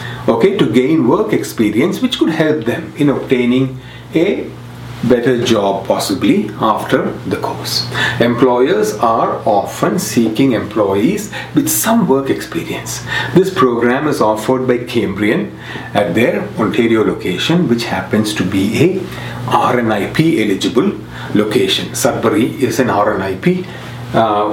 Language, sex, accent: English, male, Indian